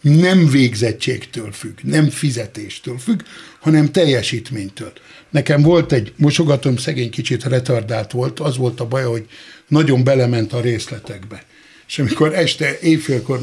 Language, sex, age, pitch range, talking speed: Hungarian, male, 60-79, 125-165 Hz, 130 wpm